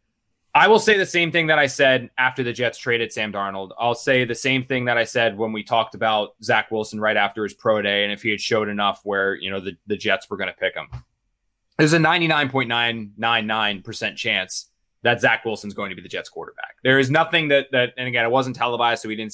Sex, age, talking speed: male, 20-39, 240 wpm